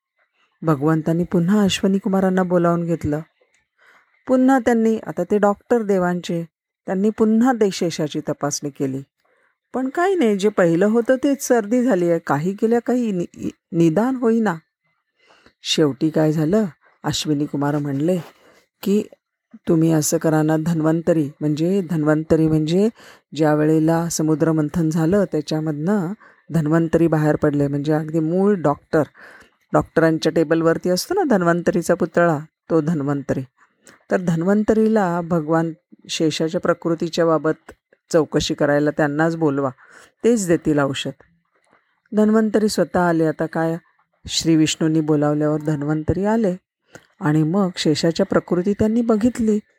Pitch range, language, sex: 155-210 Hz, Marathi, female